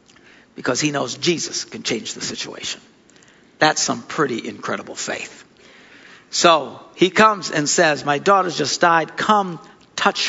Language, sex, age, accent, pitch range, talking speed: English, male, 60-79, American, 155-210 Hz, 140 wpm